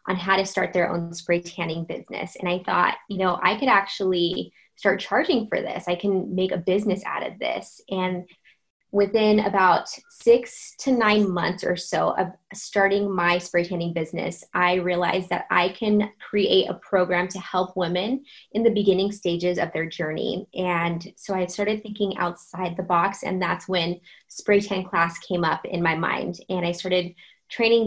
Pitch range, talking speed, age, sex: 180-205 Hz, 185 wpm, 20-39, female